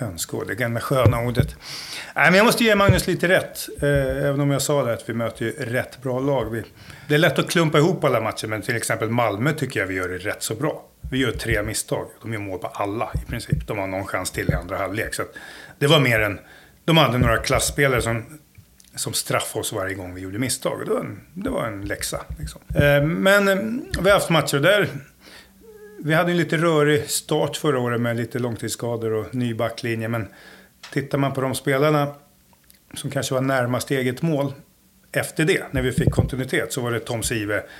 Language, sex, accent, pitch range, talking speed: Swedish, male, native, 115-150 Hz, 205 wpm